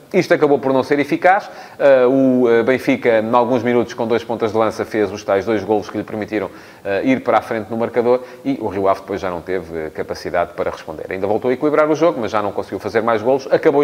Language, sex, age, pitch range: Portuguese, male, 30-49, 115-145 Hz